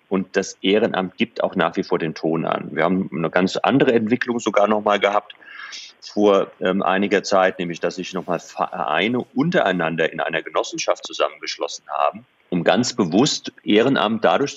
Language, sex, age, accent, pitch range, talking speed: German, male, 40-59, German, 90-115 Hz, 175 wpm